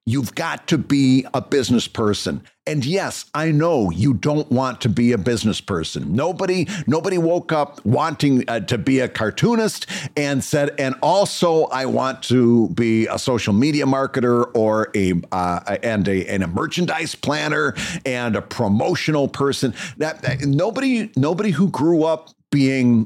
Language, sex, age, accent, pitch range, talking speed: English, male, 50-69, American, 115-165 Hz, 160 wpm